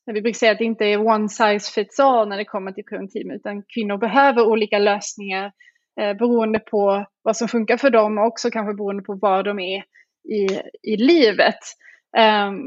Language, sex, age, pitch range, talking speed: English, female, 20-39, 205-235 Hz, 195 wpm